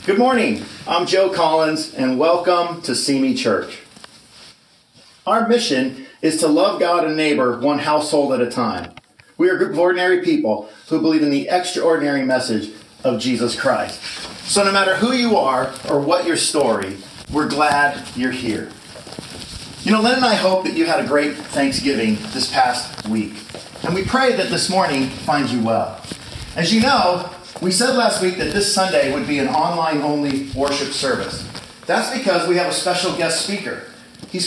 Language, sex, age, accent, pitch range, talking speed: English, male, 40-59, American, 145-210 Hz, 180 wpm